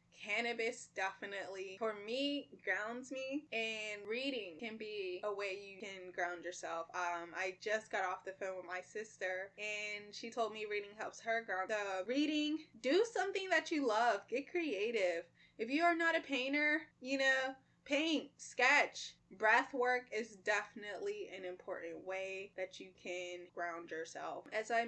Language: English